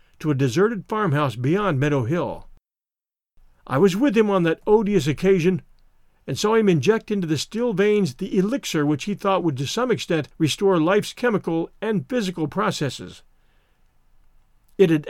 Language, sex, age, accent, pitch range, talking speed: English, male, 50-69, American, 150-205 Hz, 160 wpm